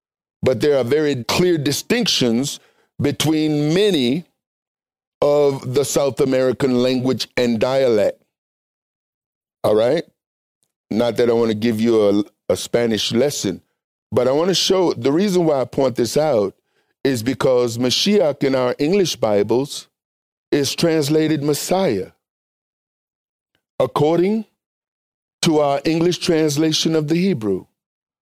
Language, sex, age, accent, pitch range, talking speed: English, male, 50-69, American, 130-155 Hz, 125 wpm